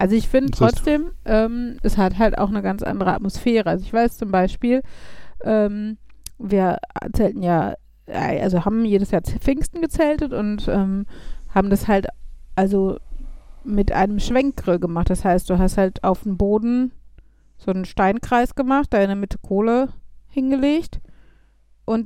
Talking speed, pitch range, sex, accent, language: 155 wpm, 190-240 Hz, female, German, German